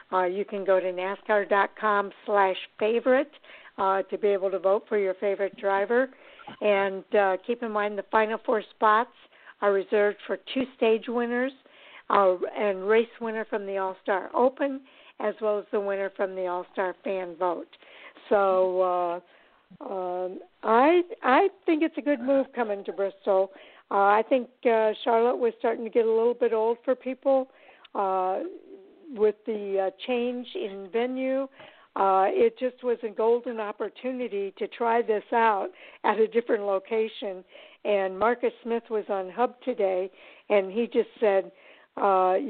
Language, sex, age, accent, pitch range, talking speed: English, female, 60-79, American, 195-240 Hz, 160 wpm